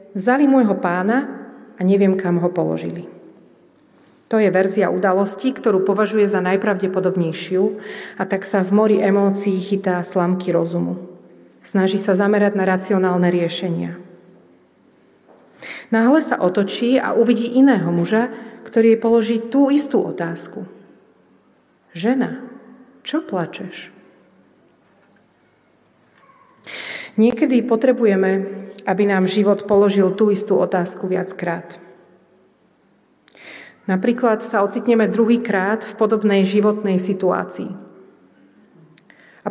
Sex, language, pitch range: female, Slovak, 190-230 Hz